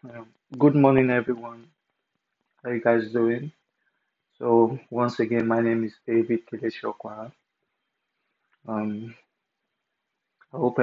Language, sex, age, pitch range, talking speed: English, male, 20-39, 115-125 Hz, 100 wpm